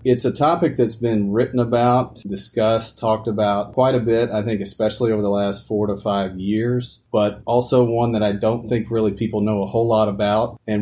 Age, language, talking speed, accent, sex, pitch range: 40-59, English, 210 wpm, American, male, 100-120 Hz